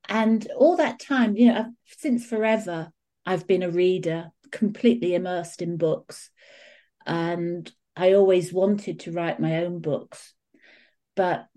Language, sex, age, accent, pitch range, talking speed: English, female, 40-59, British, 180-220 Hz, 135 wpm